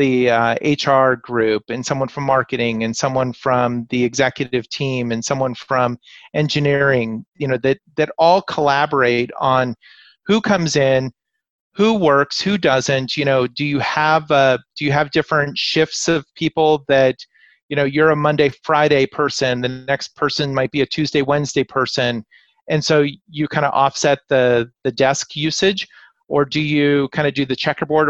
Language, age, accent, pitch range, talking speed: English, 30-49, American, 130-160 Hz, 170 wpm